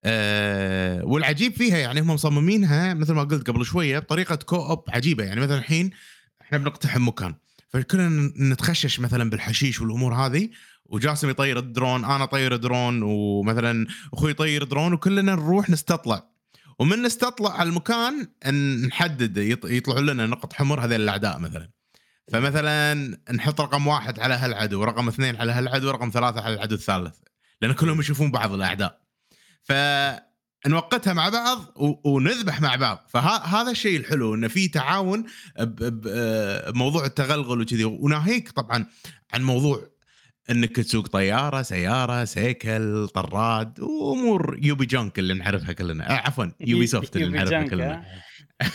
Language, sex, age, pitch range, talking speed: Arabic, male, 30-49, 115-155 Hz, 135 wpm